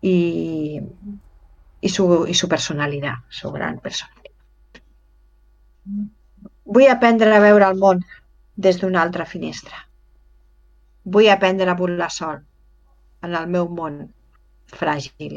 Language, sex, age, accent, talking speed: Spanish, female, 50-69, Spanish, 115 wpm